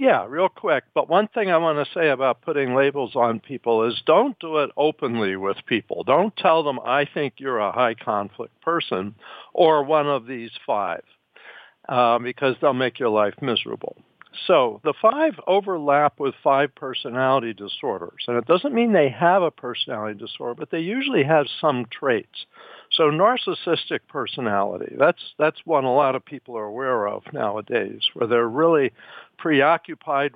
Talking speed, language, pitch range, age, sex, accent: 165 wpm, English, 115-150 Hz, 60-79, male, American